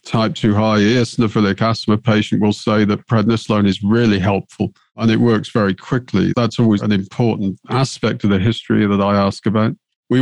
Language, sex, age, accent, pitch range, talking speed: English, male, 40-59, British, 105-125 Hz, 180 wpm